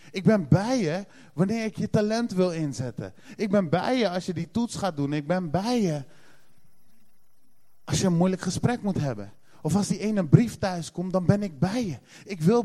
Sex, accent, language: male, Dutch, Dutch